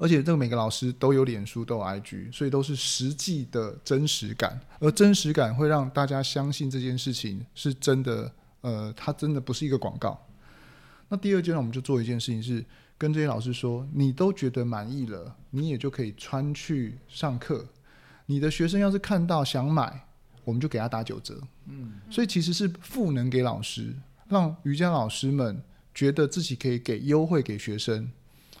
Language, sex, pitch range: English, male, 120-150 Hz